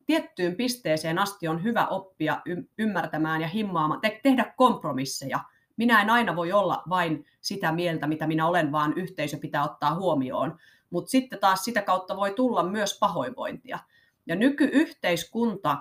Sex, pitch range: female, 155-220 Hz